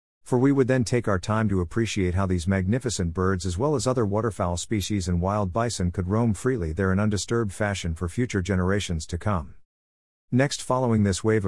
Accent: American